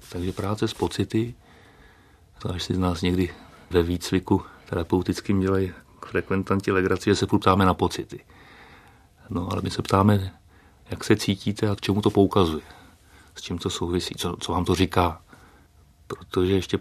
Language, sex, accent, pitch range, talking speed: Czech, male, native, 90-105 Hz, 165 wpm